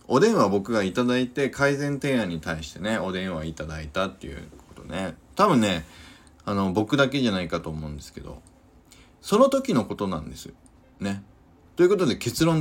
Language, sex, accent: Japanese, male, native